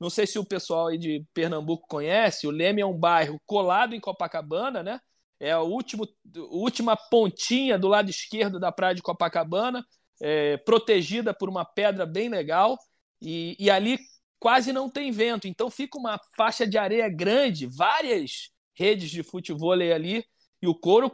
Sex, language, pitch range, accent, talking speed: male, Portuguese, 175-230 Hz, Brazilian, 170 wpm